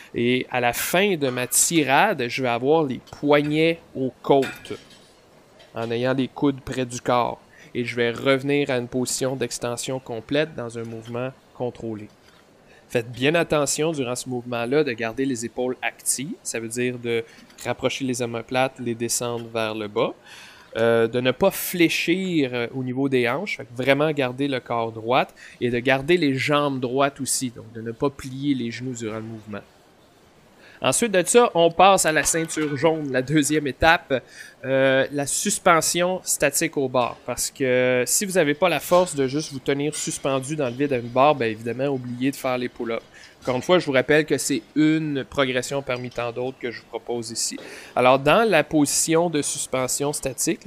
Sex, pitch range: male, 125-150 Hz